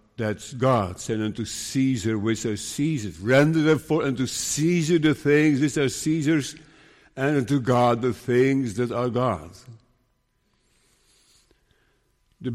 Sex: male